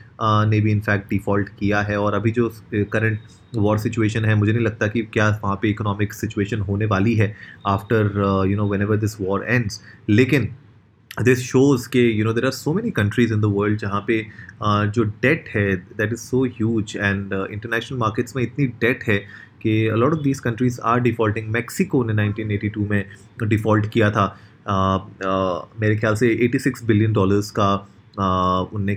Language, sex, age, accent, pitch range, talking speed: Hindi, male, 30-49, native, 105-120 Hz, 180 wpm